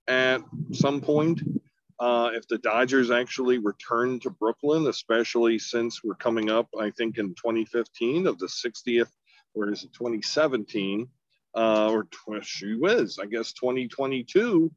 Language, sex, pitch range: English, male, 110-140 Hz